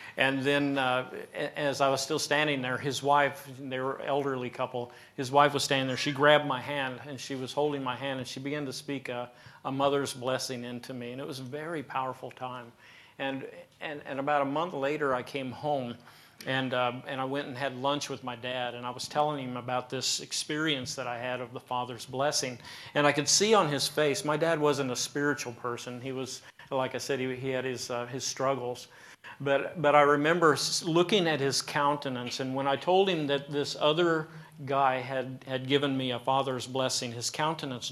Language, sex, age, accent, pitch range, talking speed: English, male, 50-69, American, 130-145 Hz, 215 wpm